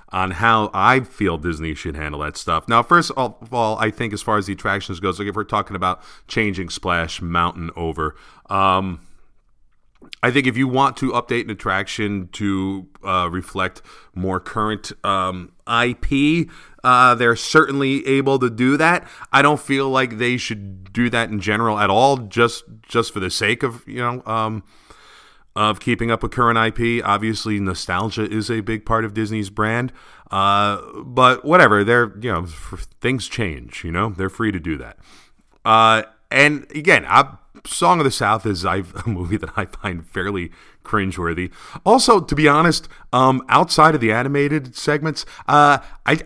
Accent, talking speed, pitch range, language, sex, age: American, 175 wpm, 95-125 Hz, English, male, 40-59